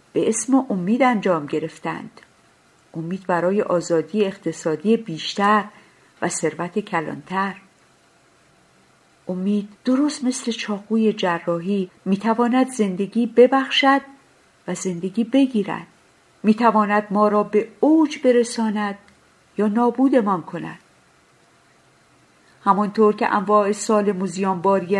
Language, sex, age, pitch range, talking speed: Persian, female, 50-69, 185-245 Hz, 90 wpm